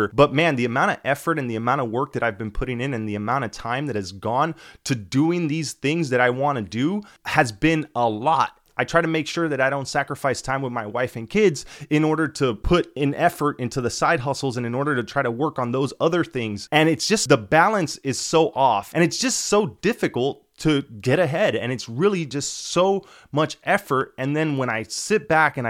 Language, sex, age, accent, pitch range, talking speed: English, male, 20-39, American, 125-160 Hz, 240 wpm